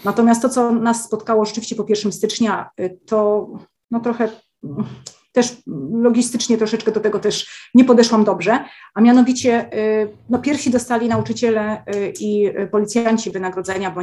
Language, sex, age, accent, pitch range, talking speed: Polish, female, 30-49, native, 195-240 Hz, 135 wpm